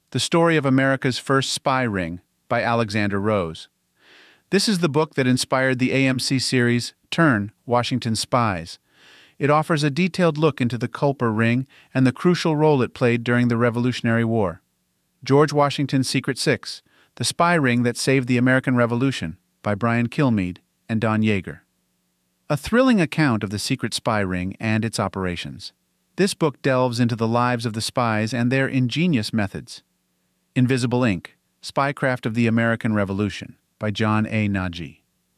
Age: 40-59